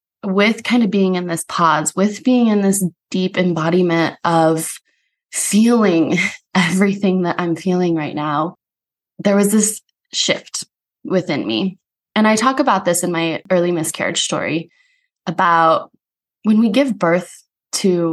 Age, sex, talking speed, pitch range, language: 20-39, female, 140 wpm, 170-205 Hz, English